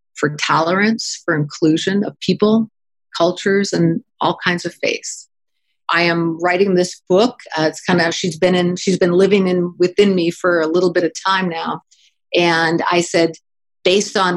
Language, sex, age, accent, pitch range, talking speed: English, female, 50-69, American, 165-190 Hz, 165 wpm